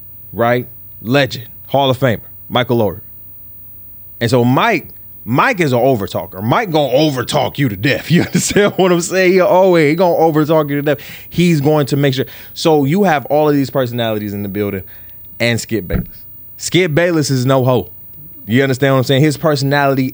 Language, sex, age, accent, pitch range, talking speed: English, male, 20-39, American, 105-145 Hz, 190 wpm